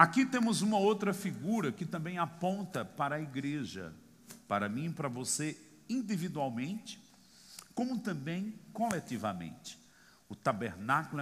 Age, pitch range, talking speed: 50-69, 120-185 Hz, 120 wpm